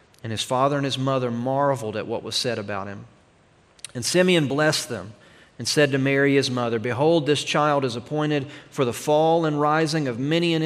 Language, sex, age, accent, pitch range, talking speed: English, male, 40-59, American, 130-155 Hz, 205 wpm